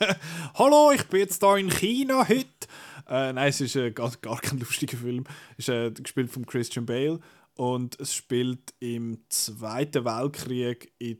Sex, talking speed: male, 170 wpm